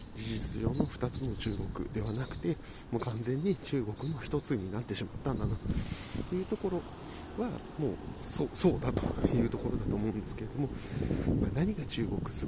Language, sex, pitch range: Japanese, male, 105-135 Hz